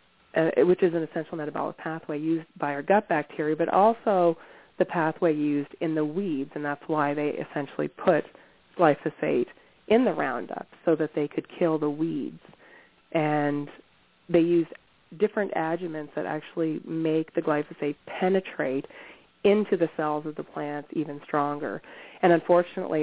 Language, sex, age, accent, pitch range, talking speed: English, female, 30-49, American, 150-185 Hz, 150 wpm